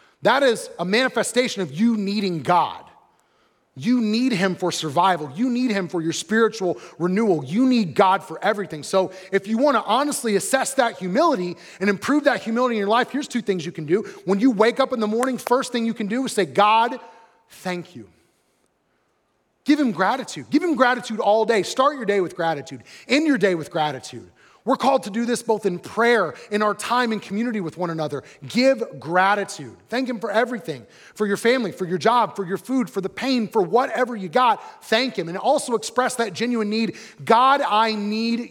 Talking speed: 205 wpm